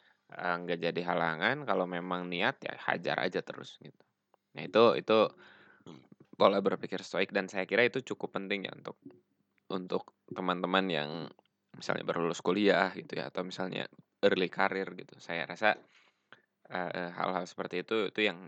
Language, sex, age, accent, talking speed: Indonesian, male, 20-39, native, 150 wpm